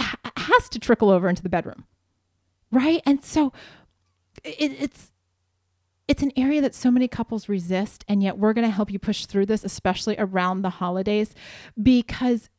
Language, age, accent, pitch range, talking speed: English, 30-49, American, 195-255 Hz, 160 wpm